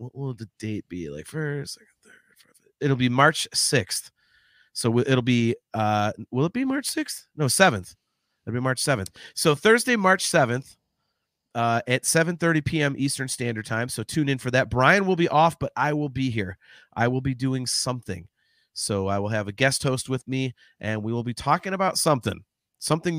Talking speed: 195 wpm